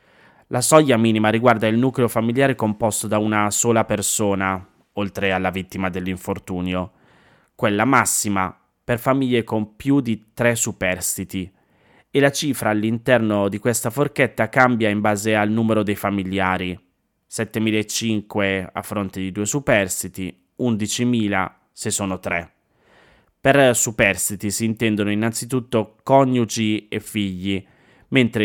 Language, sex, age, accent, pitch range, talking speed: Italian, male, 20-39, native, 100-120 Hz, 120 wpm